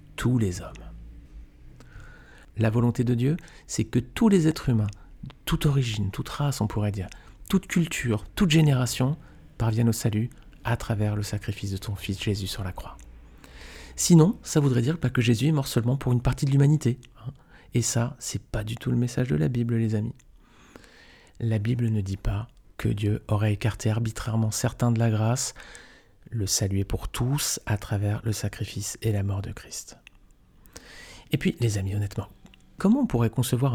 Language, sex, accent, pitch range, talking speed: French, male, French, 105-135 Hz, 180 wpm